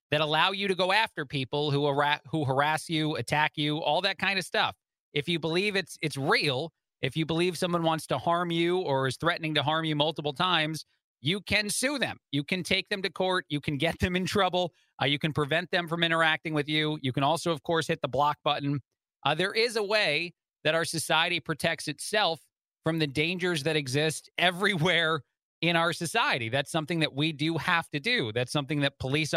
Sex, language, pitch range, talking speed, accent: male, English, 145-170 Hz, 215 wpm, American